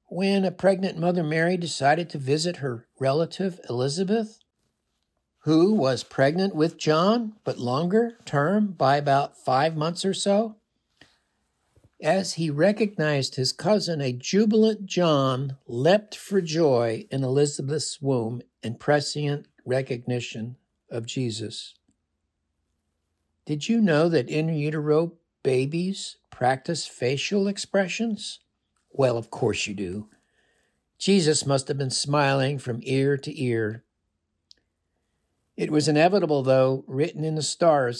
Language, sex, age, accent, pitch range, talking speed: English, male, 60-79, American, 125-170 Hz, 120 wpm